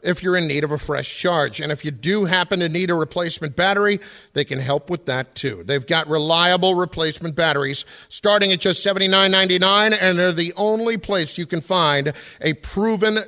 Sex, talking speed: male, 195 wpm